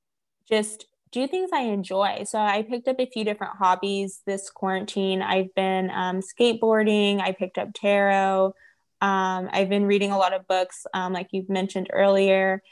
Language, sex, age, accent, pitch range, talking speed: English, female, 20-39, American, 190-215 Hz, 170 wpm